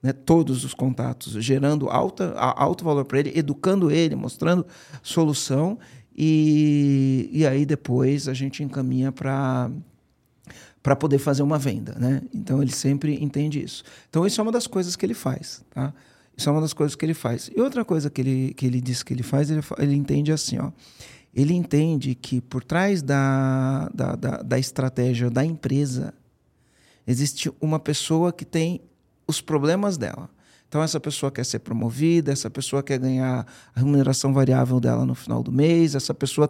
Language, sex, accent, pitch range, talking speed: Portuguese, male, Brazilian, 130-160 Hz, 170 wpm